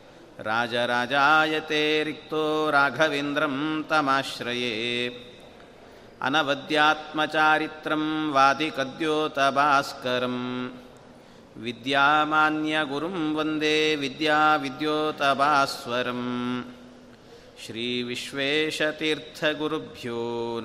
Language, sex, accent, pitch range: Kannada, male, native, 125-155 Hz